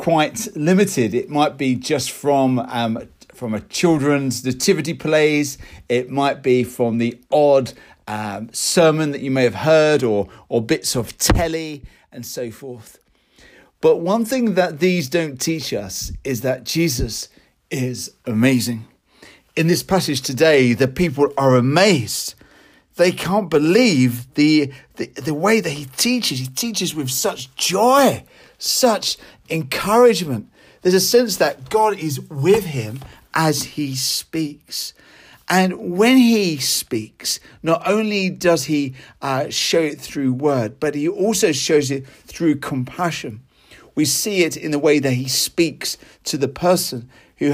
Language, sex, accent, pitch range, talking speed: English, male, British, 130-170 Hz, 145 wpm